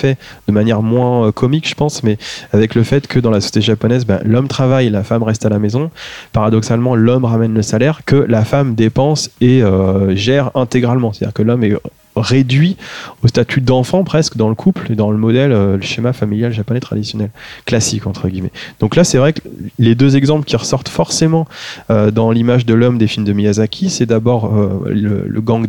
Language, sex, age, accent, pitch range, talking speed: French, male, 20-39, French, 105-125 Hz, 205 wpm